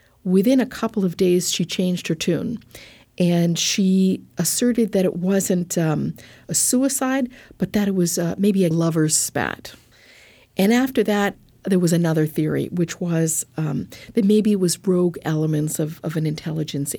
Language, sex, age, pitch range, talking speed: English, female, 50-69, 160-195 Hz, 165 wpm